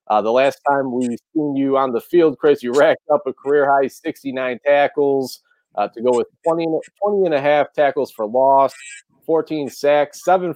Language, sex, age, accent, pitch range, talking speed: English, male, 30-49, American, 125-155 Hz, 195 wpm